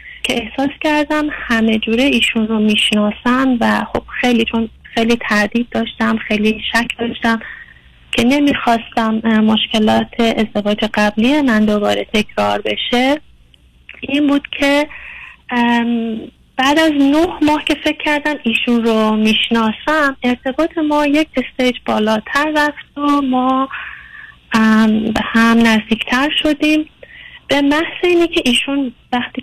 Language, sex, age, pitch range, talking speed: Persian, female, 30-49, 220-280 Hz, 115 wpm